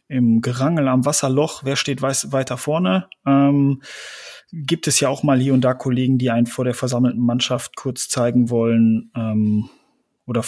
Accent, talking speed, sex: German, 165 wpm, male